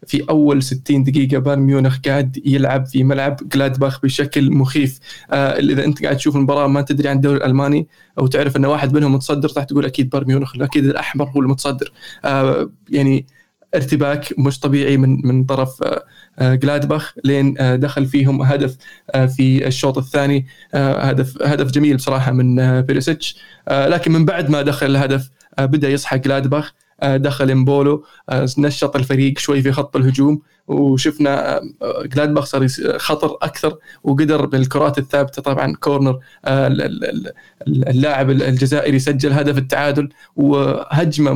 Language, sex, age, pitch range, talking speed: Arabic, male, 20-39, 135-145 Hz, 145 wpm